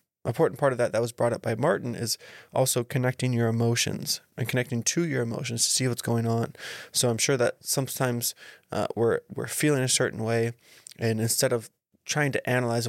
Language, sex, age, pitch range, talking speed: English, male, 20-39, 120-130 Hz, 200 wpm